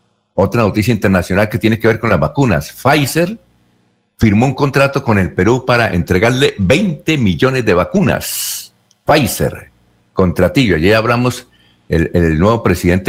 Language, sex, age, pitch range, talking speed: Spanish, male, 60-79, 90-130 Hz, 140 wpm